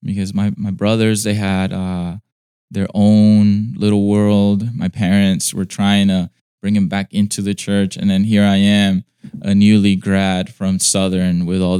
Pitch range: 95-105 Hz